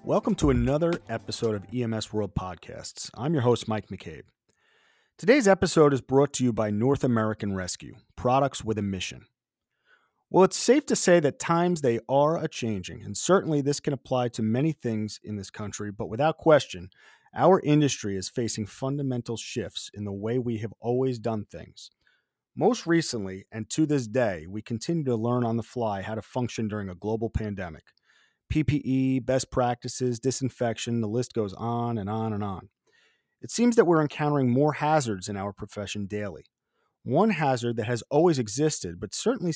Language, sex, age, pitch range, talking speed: English, male, 40-59, 110-140 Hz, 175 wpm